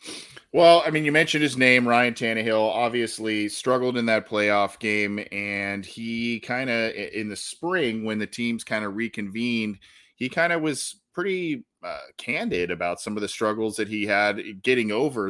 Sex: male